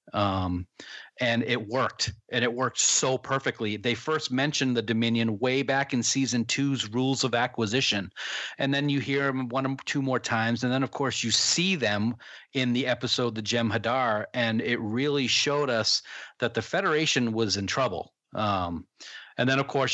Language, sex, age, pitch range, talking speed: English, male, 40-59, 110-135 Hz, 185 wpm